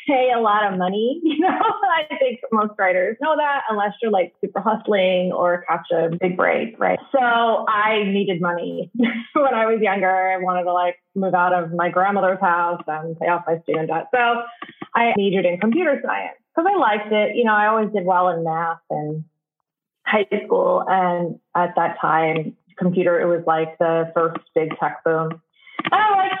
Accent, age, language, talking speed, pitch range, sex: American, 20-39, English, 190 wpm, 175-230 Hz, female